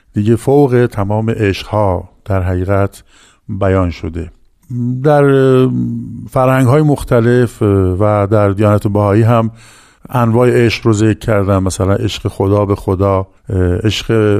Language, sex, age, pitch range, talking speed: Persian, male, 50-69, 100-120 Hz, 120 wpm